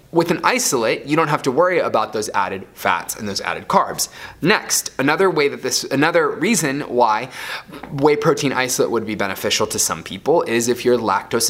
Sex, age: male, 20-39